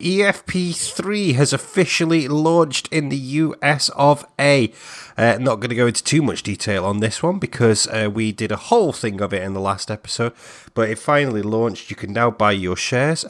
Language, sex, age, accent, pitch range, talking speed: English, male, 30-49, British, 105-145 Hz, 200 wpm